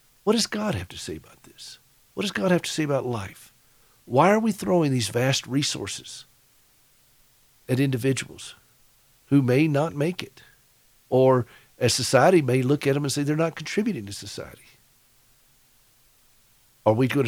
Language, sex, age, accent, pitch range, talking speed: English, male, 50-69, American, 120-155 Hz, 165 wpm